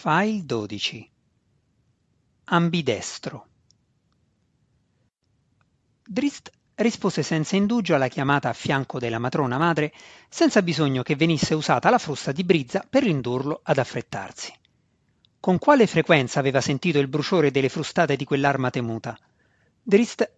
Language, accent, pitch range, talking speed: Italian, native, 135-180 Hz, 120 wpm